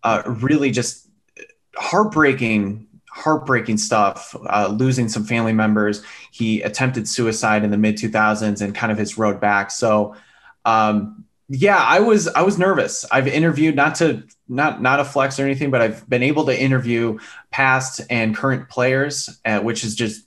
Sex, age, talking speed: male, 20-39, 170 wpm